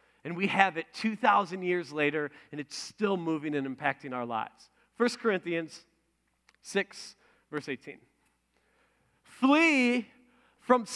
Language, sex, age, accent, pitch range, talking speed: English, male, 40-59, American, 195-275 Hz, 120 wpm